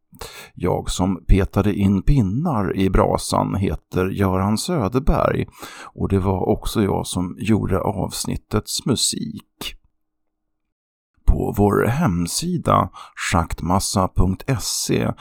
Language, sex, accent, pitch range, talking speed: Swedish, male, native, 80-105 Hz, 90 wpm